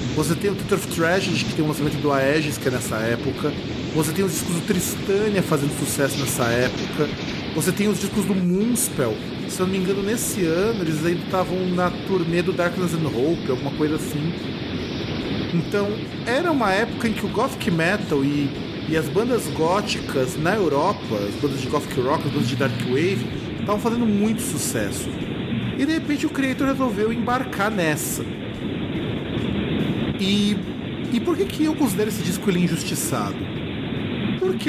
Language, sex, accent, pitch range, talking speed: Portuguese, male, Brazilian, 155-210 Hz, 175 wpm